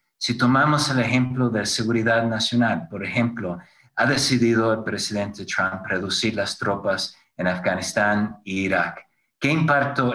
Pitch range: 100-125 Hz